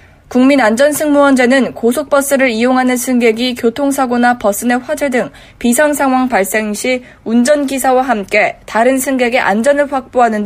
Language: Korean